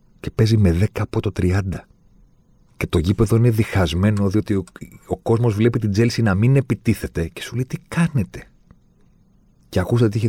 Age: 40-59